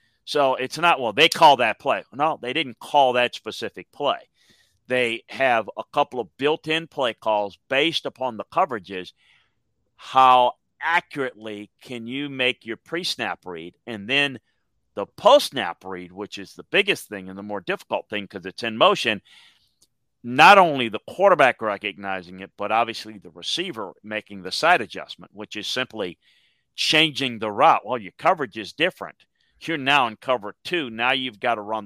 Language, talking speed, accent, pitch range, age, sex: English, 170 wpm, American, 110-145 Hz, 40-59, male